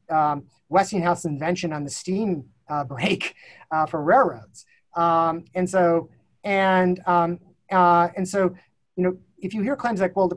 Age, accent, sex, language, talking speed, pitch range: 30-49, American, male, English, 160 wpm, 155-190 Hz